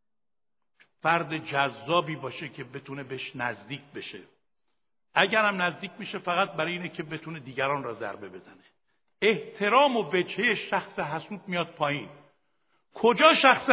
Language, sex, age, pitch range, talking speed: Persian, male, 60-79, 165-225 Hz, 125 wpm